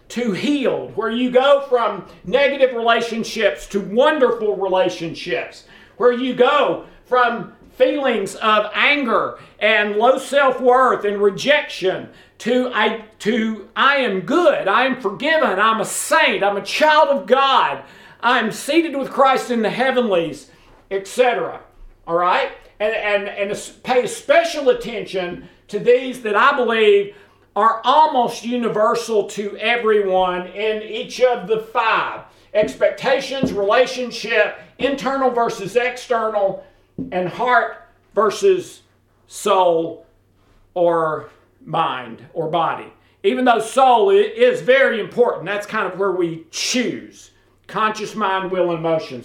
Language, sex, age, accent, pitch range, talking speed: English, male, 50-69, American, 195-255 Hz, 125 wpm